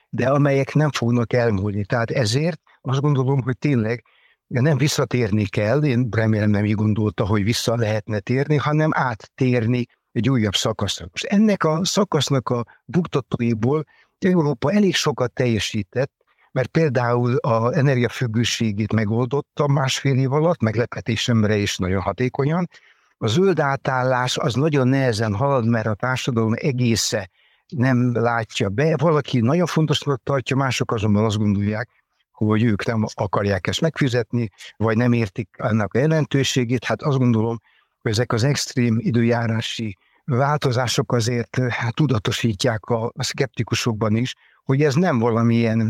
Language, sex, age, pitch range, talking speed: Hungarian, male, 60-79, 115-140 Hz, 135 wpm